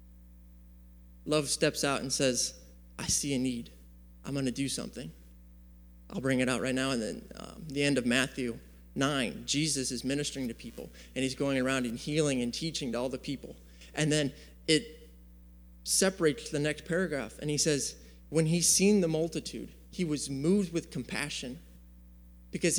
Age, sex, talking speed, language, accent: 20-39, male, 175 wpm, English, American